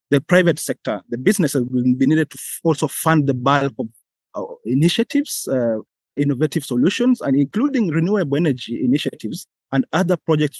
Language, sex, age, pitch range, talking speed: English, male, 30-49, 130-165 Hz, 155 wpm